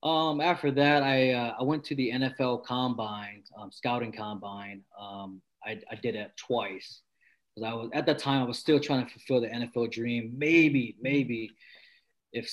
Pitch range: 110-130 Hz